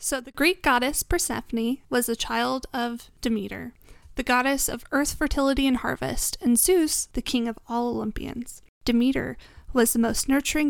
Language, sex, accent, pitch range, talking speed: English, female, American, 230-265 Hz, 165 wpm